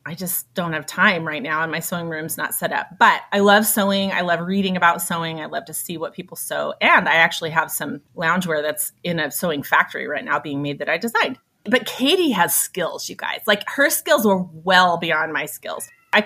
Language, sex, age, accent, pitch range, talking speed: English, female, 30-49, American, 170-250 Hz, 235 wpm